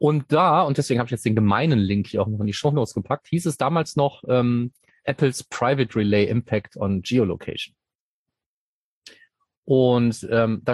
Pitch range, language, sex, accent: 105-140 Hz, German, male, German